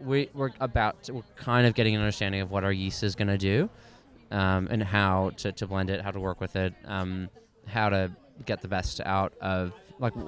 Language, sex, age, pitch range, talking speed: English, male, 20-39, 95-115 Hz, 220 wpm